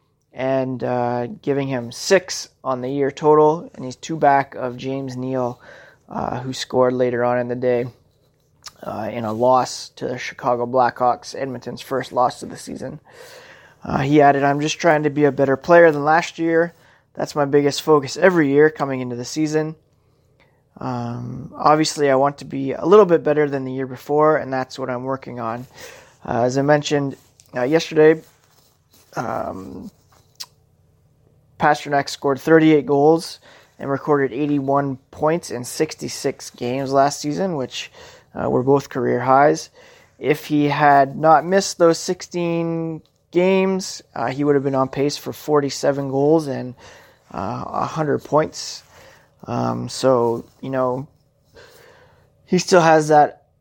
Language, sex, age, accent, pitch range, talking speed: English, male, 20-39, American, 130-155 Hz, 155 wpm